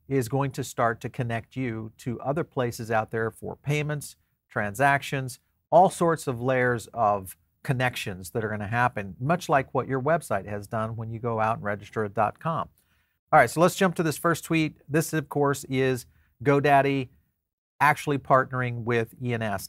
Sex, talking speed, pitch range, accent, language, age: male, 175 wpm, 115-145 Hz, American, English, 40-59